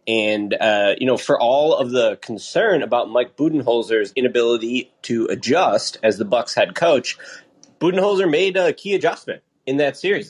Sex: male